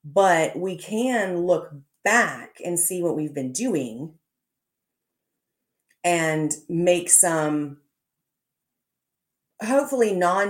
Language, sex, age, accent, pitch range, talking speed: English, female, 30-49, American, 155-200 Hz, 90 wpm